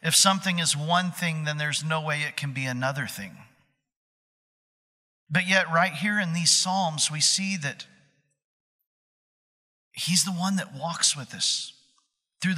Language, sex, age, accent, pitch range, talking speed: English, male, 40-59, American, 160-205 Hz, 155 wpm